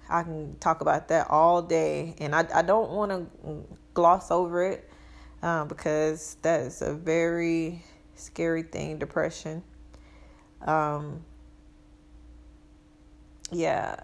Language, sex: English, female